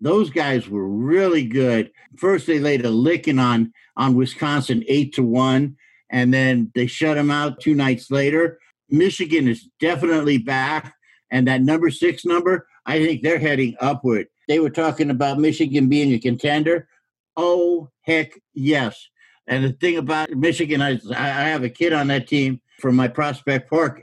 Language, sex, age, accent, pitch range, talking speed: English, male, 60-79, American, 130-175 Hz, 165 wpm